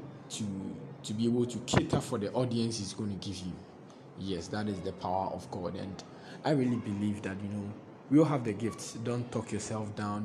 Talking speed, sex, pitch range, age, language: 215 wpm, male, 100-120 Hz, 20-39, English